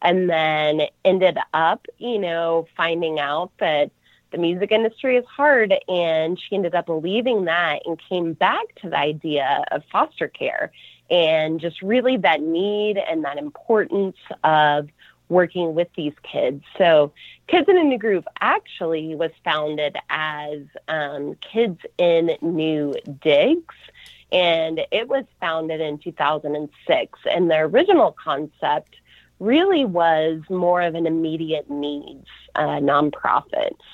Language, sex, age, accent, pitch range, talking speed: English, female, 30-49, American, 150-205 Hz, 135 wpm